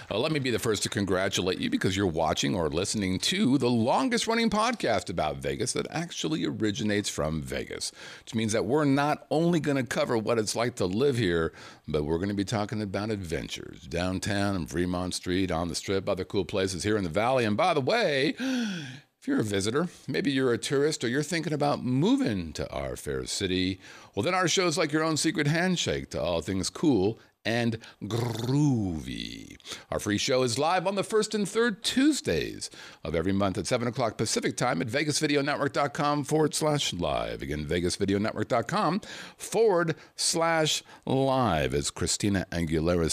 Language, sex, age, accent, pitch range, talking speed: English, male, 50-69, American, 95-150 Hz, 185 wpm